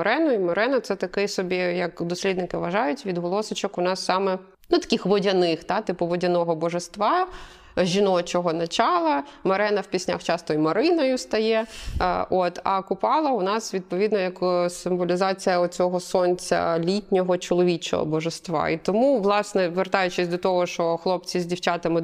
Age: 20-39